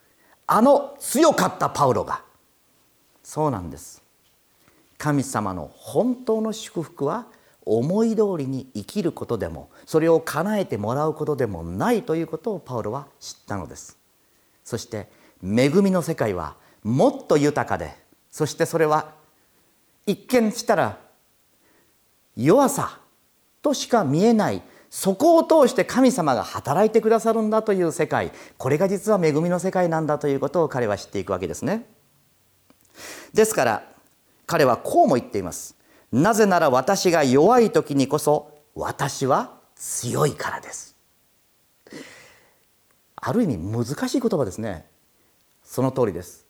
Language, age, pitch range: Japanese, 40-59, 135-225 Hz